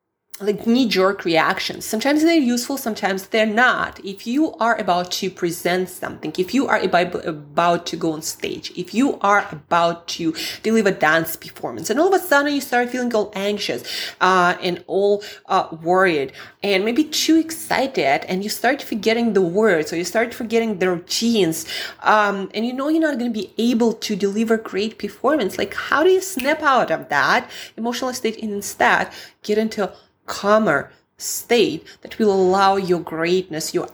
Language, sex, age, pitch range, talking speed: English, female, 20-39, 180-235 Hz, 175 wpm